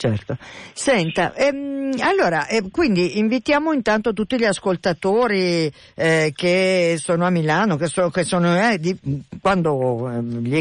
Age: 50-69